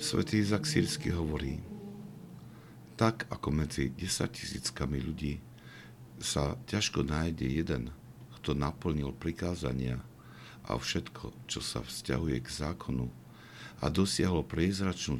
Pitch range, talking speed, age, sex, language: 70-90 Hz, 105 wpm, 60-79, male, Slovak